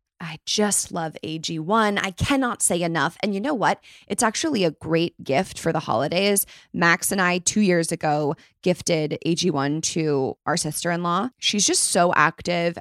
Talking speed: 165 wpm